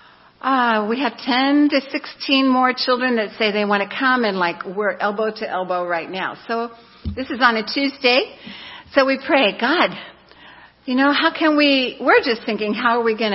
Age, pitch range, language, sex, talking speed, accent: 60-79, 185-250 Hz, English, female, 205 wpm, American